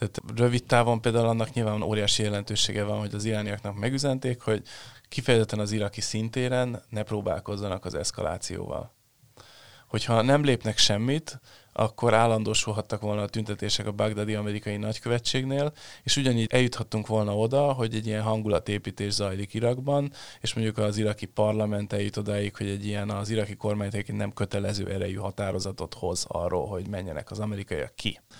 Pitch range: 105-120 Hz